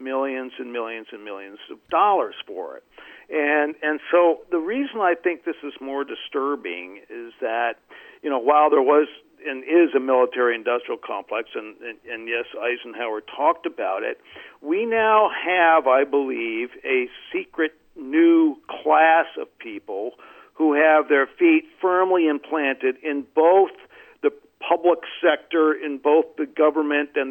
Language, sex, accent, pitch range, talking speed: English, male, American, 135-195 Hz, 150 wpm